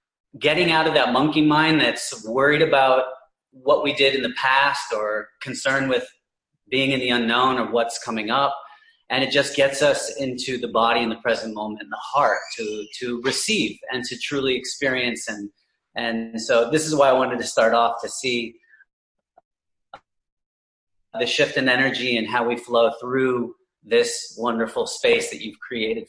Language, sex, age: English, male, 30-49